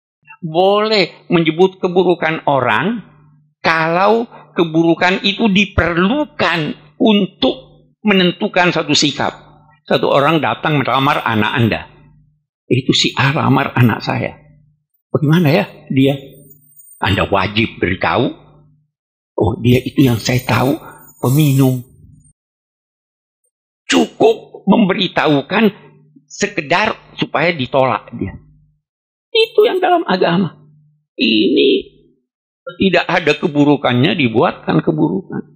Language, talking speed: Indonesian, 90 wpm